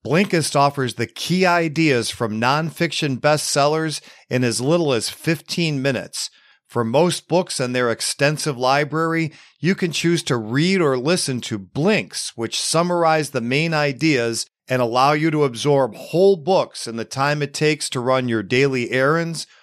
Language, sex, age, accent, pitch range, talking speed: English, male, 40-59, American, 125-155 Hz, 160 wpm